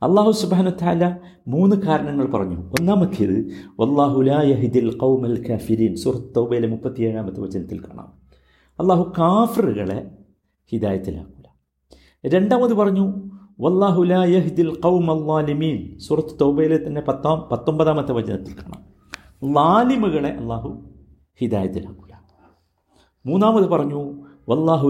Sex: male